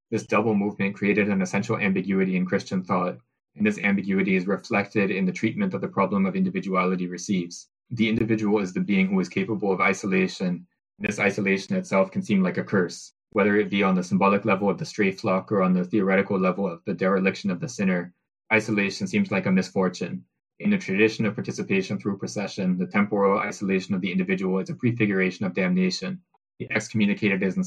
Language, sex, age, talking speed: English, male, 20-39, 200 wpm